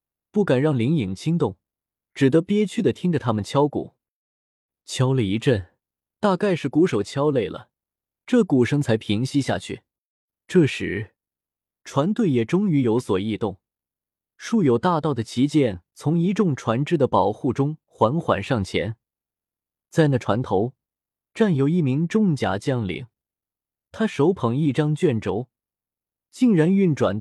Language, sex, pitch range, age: Chinese, male, 105-165 Hz, 20-39